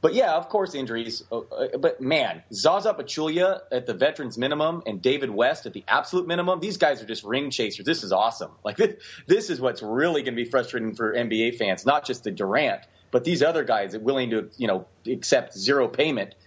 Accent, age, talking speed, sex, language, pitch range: American, 30-49, 210 wpm, male, English, 120-180 Hz